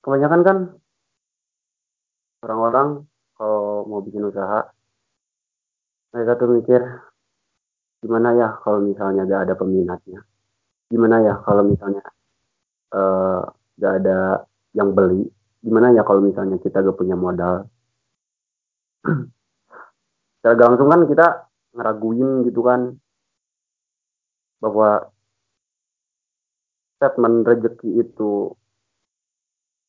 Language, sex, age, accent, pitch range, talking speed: Indonesian, male, 30-49, native, 100-120 Hz, 90 wpm